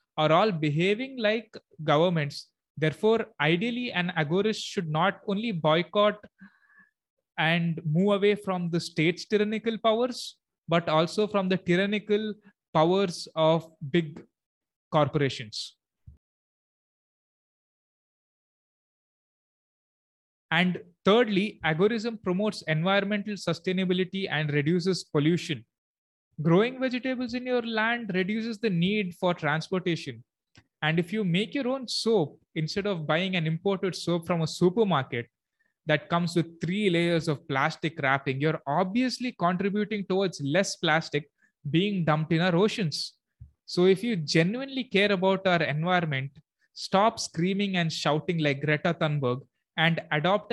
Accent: Indian